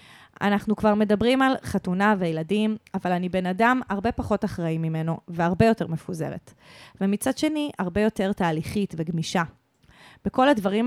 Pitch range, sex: 170-215 Hz, female